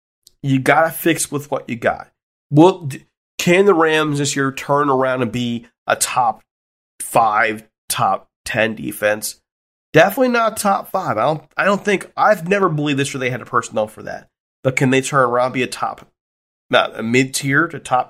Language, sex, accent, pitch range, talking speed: English, male, American, 130-165 Hz, 190 wpm